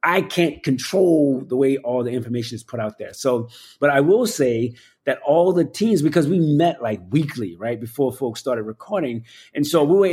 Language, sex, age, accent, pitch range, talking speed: English, male, 30-49, American, 135-170 Hz, 205 wpm